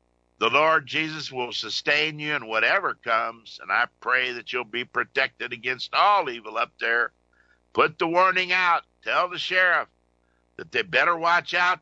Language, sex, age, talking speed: English, male, 50-69, 170 wpm